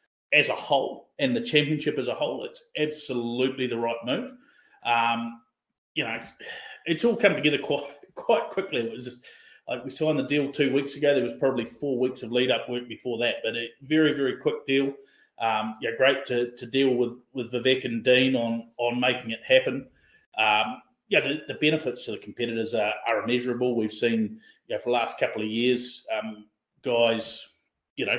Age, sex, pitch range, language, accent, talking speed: 30-49, male, 120-145 Hz, English, Australian, 190 wpm